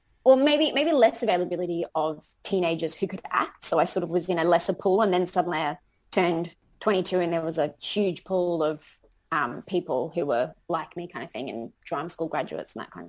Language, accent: English, Australian